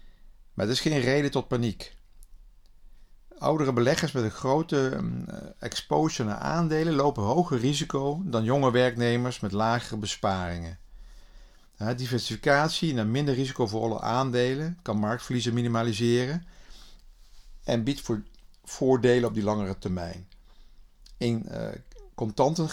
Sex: male